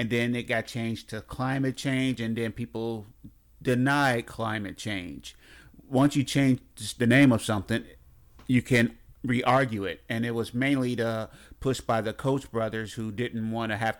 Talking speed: 170 wpm